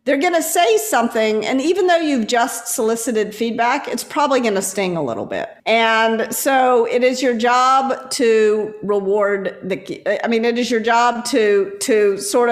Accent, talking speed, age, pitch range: American, 180 wpm, 50-69, 200-255 Hz